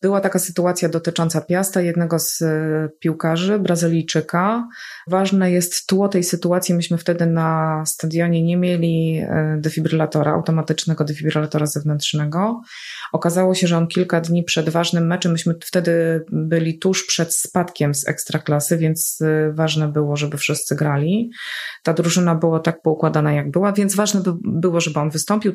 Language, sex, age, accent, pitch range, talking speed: Polish, female, 20-39, native, 155-180 Hz, 140 wpm